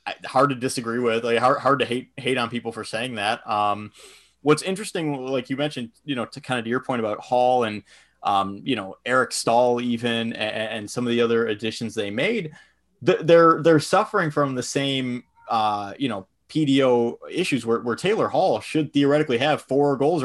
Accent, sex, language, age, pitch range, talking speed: American, male, English, 20-39, 120-150 Hz, 195 wpm